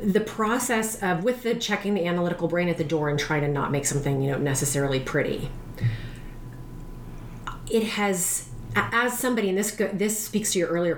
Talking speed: 180 wpm